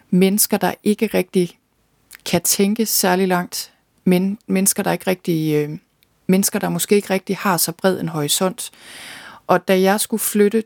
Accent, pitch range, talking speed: native, 160-190 Hz, 165 wpm